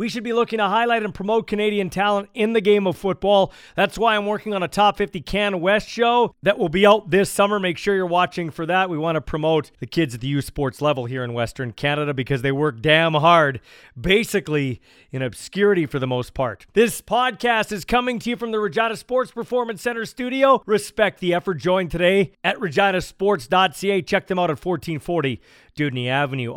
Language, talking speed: English, 205 wpm